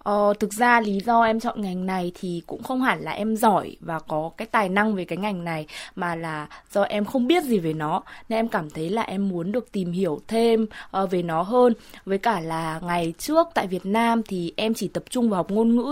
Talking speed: 240 wpm